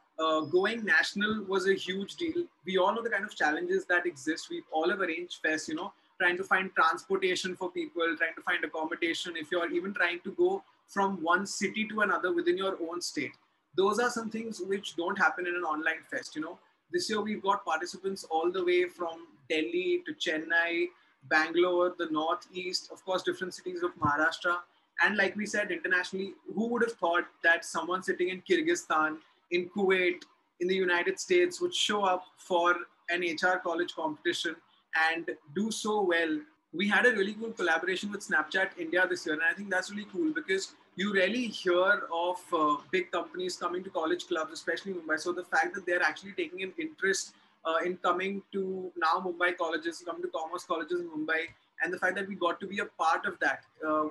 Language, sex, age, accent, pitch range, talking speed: English, male, 30-49, Indian, 170-205 Hz, 200 wpm